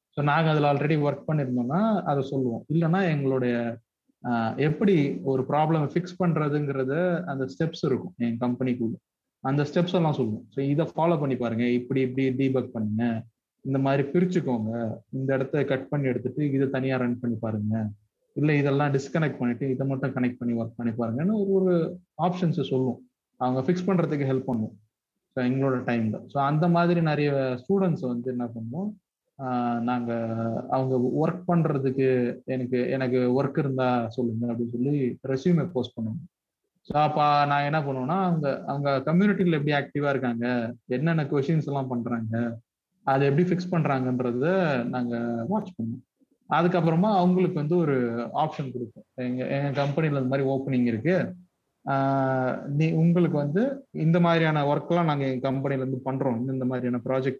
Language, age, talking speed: Tamil, 30-49, 145 wpm